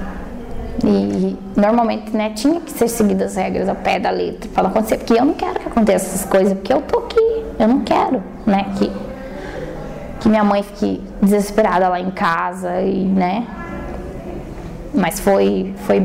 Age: 10-29